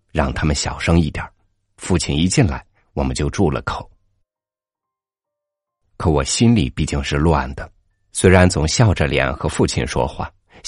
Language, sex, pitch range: Chinese, male, 75-100 Hz